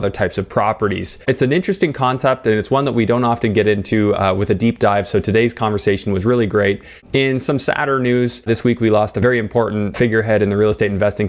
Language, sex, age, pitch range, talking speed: English, male, 20-39, 100-115 Hz, 240 wpm